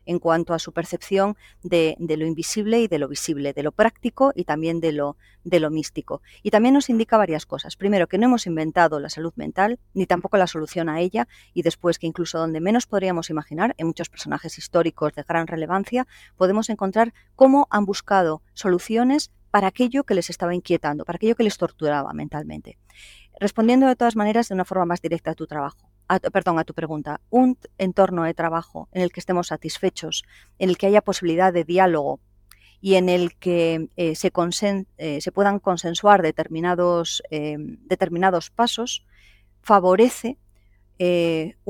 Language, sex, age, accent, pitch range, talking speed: Spanish, female, 40-59, Spanish, 155-195 Hz, 175 wpm